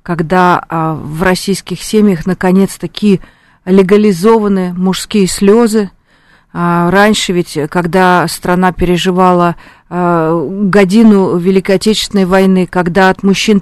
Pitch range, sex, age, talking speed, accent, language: 185-215 Hz, female, 40-59, 90 wpm, native, Russian